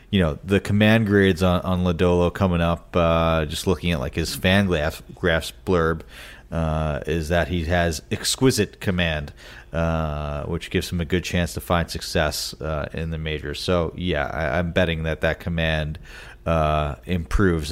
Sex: male